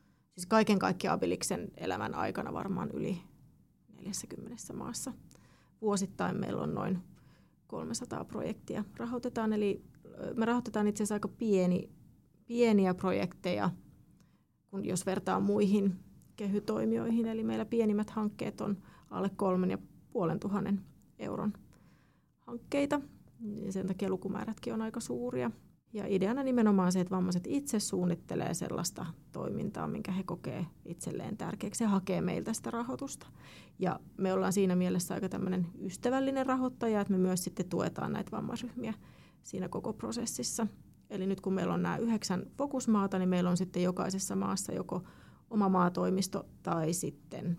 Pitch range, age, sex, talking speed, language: 180-215 Hz, 30-49, female, 130 wpm, Finnish